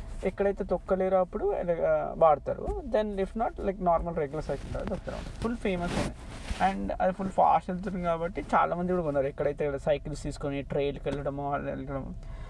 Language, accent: Telugu, native